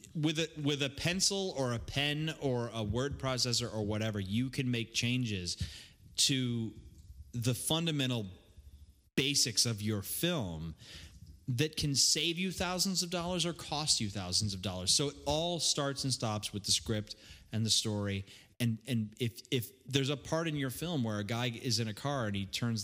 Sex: male